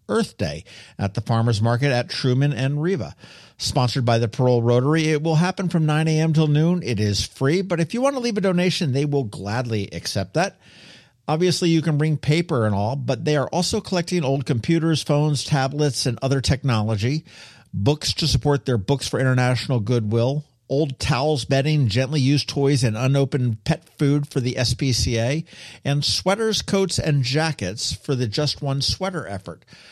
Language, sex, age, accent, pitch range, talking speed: English, male, 50-69, American, 115-155 Hz, 180 wpm